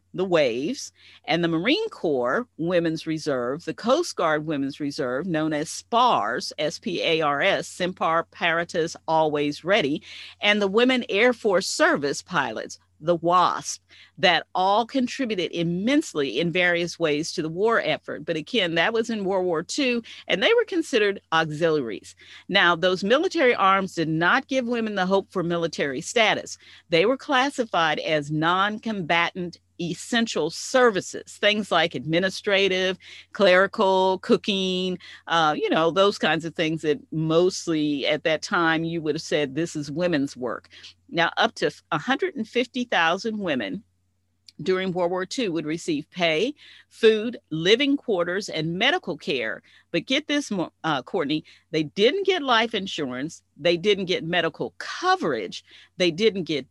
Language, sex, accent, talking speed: English, female, American, 145 wpm